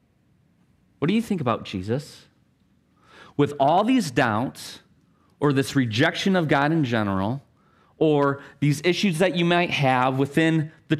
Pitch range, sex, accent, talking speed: 130-180 Hz, male, American, 140 wpm